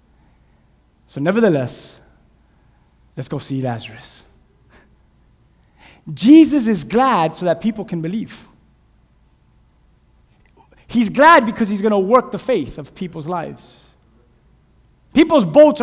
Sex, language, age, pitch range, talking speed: male, English, 20-39, 170-240 Hz, 100 wpm